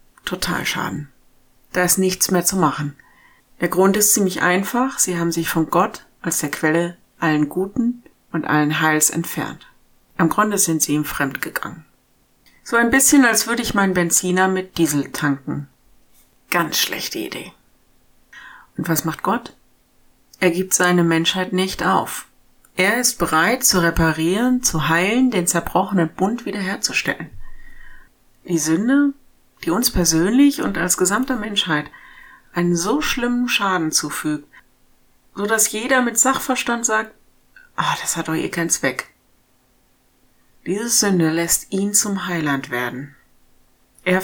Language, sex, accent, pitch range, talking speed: German, female, German, 160-205 Hz, 140 wpm